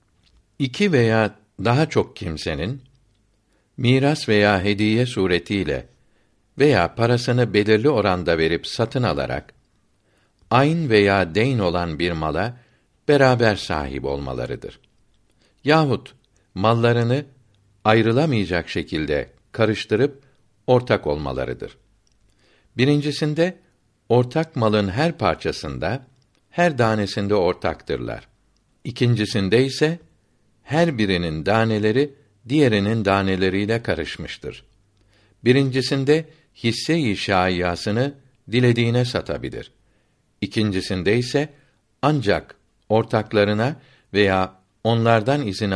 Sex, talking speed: male, 80 wpm